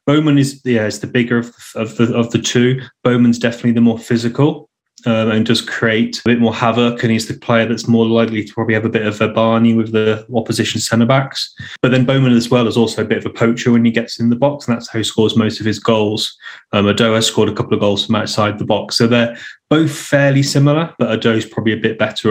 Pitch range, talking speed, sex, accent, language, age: 110-125 Hz, 245 wpm, male, British, English, 20-39